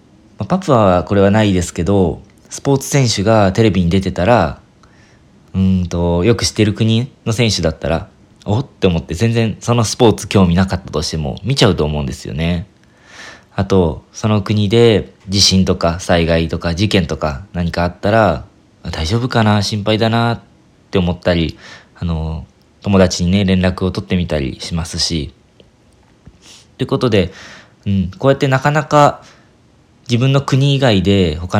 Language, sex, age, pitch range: Japanese, male, 20-39, 85-115 Hz